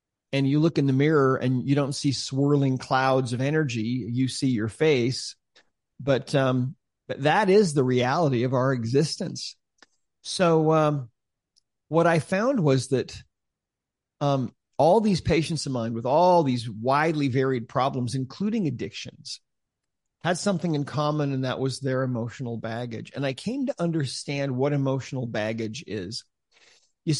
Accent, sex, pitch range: American, male, 120-150 Hz